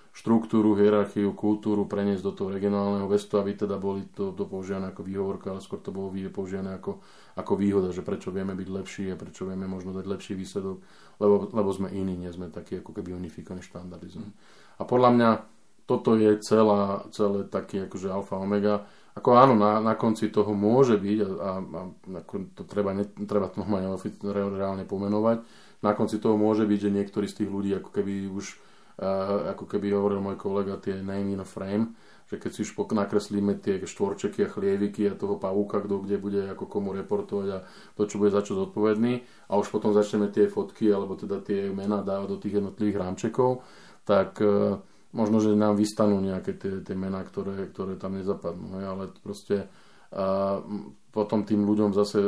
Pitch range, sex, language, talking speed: 95-105 Hz, male, Slovak, 185 wpm